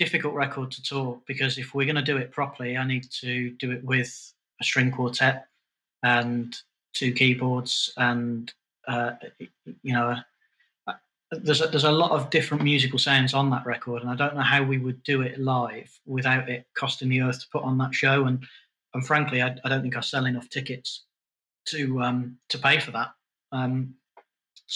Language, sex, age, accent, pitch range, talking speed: English, male, 30-49, British, 125-140 Hz, 195 wpm